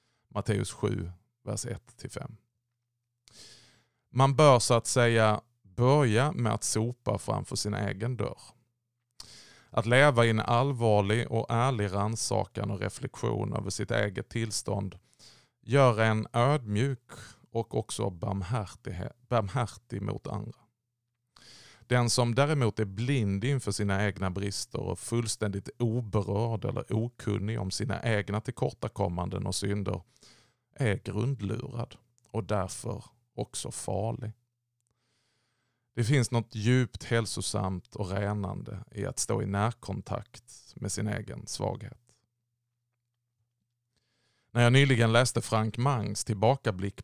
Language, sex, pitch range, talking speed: Swedish, male, 105-120 Hz, 115 wpm